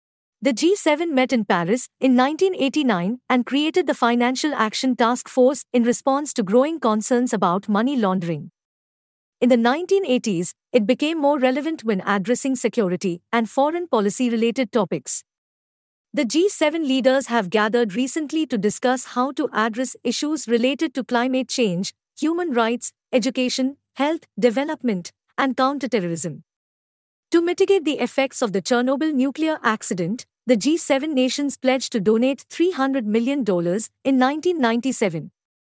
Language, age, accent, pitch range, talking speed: English, 50-69, Indian, 220-280 Hz, 130 wpm